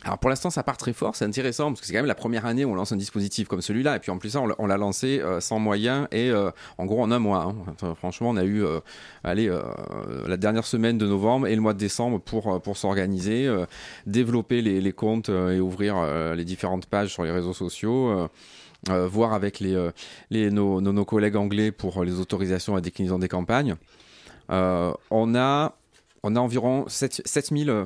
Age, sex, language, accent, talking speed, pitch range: 30-49, male, French, French, 200 wpm, 95-115 Hz